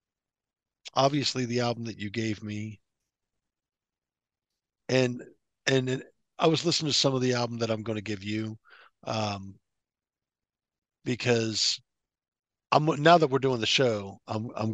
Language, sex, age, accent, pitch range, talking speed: English, male, 50-69, American, 95-115 Hz, 135 wpm